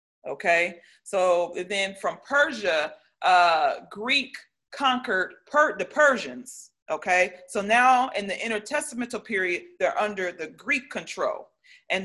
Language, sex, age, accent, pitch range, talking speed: English, female, 40-59, American, 195-260 Hz, 120 wpm